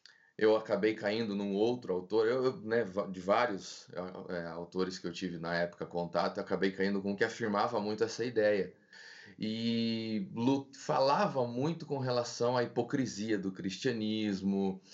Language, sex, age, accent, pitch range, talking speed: Portuguese, male, 20-39, Brazilian, 95-110 Hz, 140 wpm